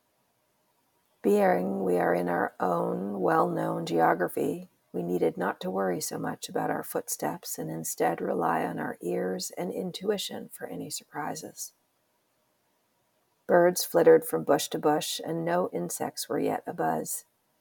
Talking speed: 140 wpm